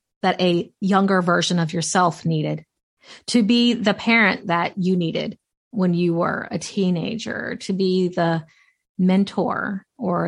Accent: American